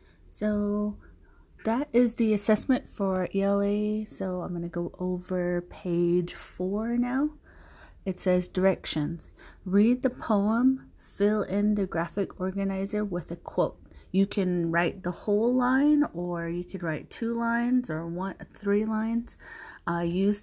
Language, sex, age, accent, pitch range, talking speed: English, female, 30-49, American, 165-210 Hz, 140 wpm